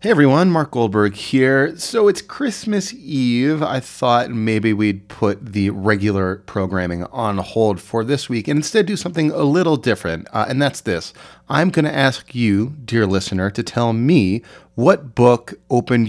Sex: male